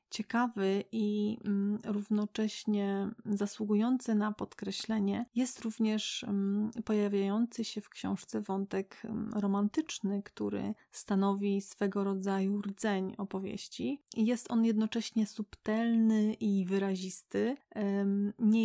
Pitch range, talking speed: 200-215 Hz, 85 wpm